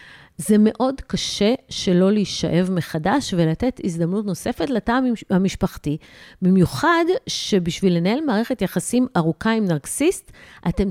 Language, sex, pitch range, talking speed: Hebrew, female, 160-225 Hz, 110 wpm